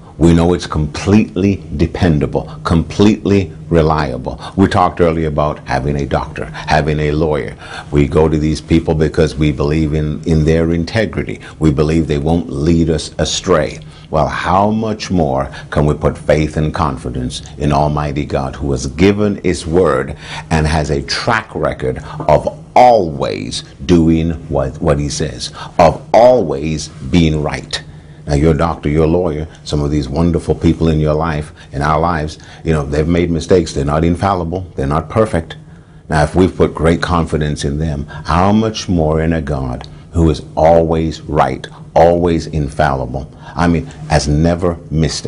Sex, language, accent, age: male, English, American, 60-79